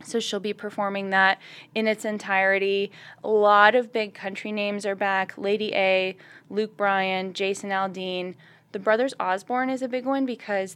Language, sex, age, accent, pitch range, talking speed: English, female, 20-39, American, 185-220 Hz, 165 wpm